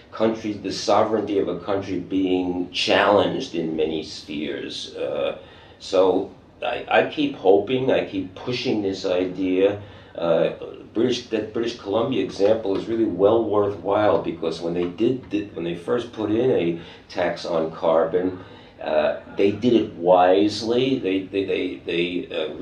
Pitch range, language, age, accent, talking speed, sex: 90-135 Hz, English, 50-69, American, 145 wpm, male